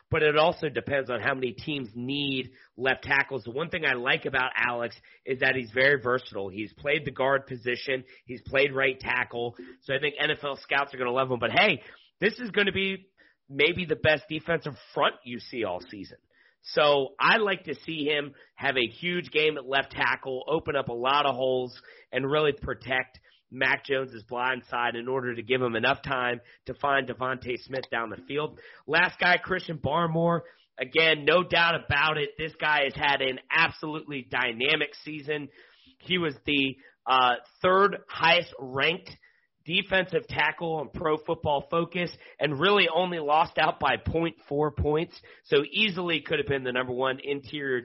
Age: 40-59